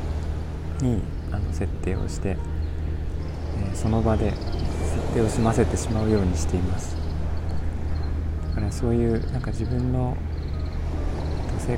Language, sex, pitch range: Japanese, male, 80-95 Hz